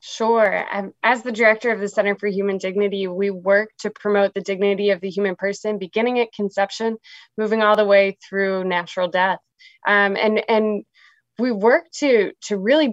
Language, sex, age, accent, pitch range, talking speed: English, female, 20-39, American, 200-235 Hz, 175 wpm